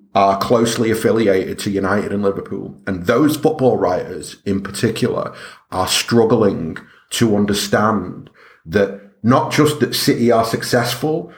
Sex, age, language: male, 30-49, English